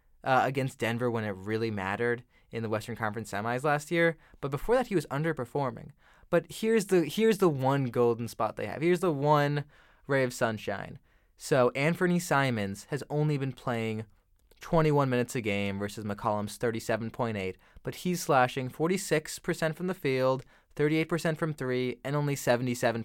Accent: American